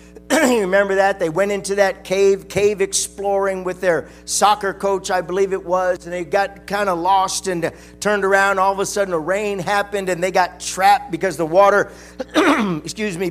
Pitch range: 195-245 Hz